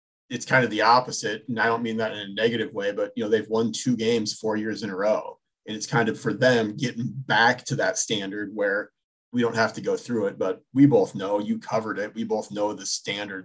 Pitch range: 110-145 Hz